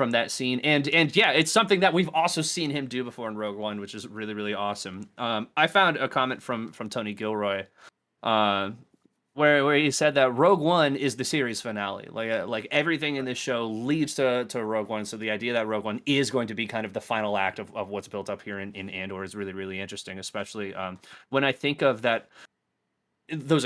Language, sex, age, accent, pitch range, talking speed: English, male, 20-39, American, 100-125 Hz, 235 wpm